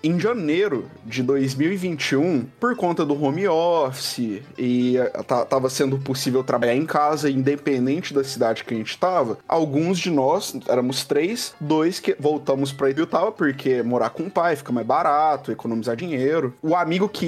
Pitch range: 125-155 Hz